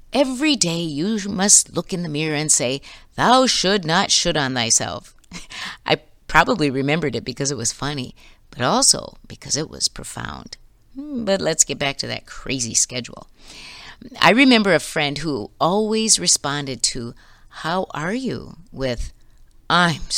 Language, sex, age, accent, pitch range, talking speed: English, female, 50-69, American, 125-195 Hz, 150 wpm